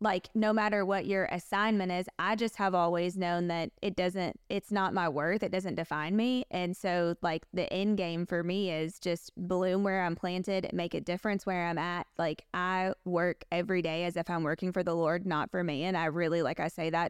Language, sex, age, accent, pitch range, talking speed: English, female, 20-39, American, 175-195 Hz, 225 wpm